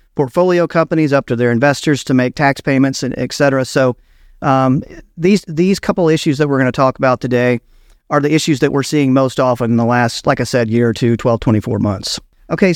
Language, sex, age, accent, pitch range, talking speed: English, male, 40-59, American, 125-155 Hz, 220 wpm